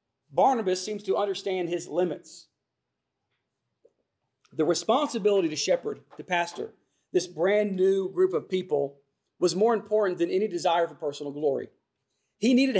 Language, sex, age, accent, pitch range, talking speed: English, male, 40-59, American, 175-230 Hz, 135 wpm